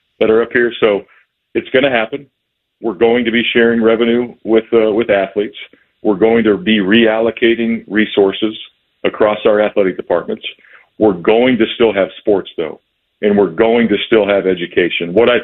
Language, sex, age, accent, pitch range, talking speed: English, male, 50-69, American, 100-120 Hz, 170 wpm